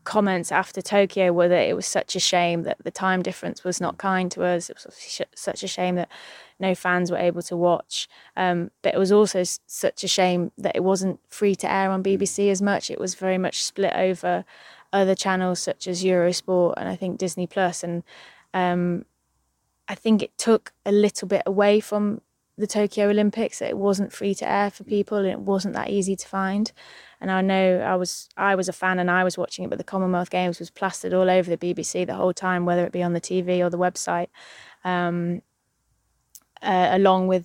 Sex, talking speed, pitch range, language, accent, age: female, 215 wpm, 180-195 Hz, English, British, 20-39